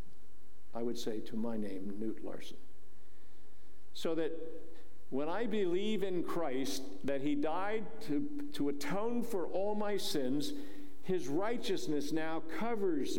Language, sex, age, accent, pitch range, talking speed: English, male, 50-69, American, 130-205 Hz, 130 wpm